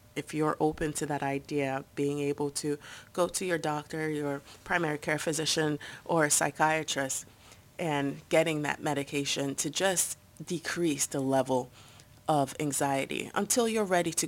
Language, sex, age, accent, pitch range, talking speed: English, female, 30-49, American, 140-170 Hz, 145 wpm